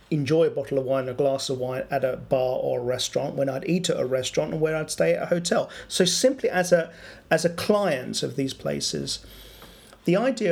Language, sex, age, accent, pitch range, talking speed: English, male, 40-59, British, 130-175 Hz, 230 wpm